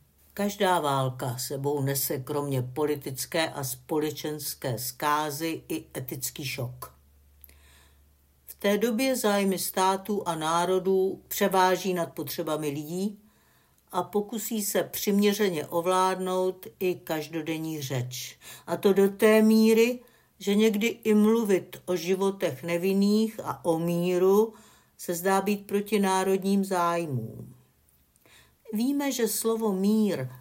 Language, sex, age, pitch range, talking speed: Czech, female, 60-79, 145-205 Hz, 110 wpm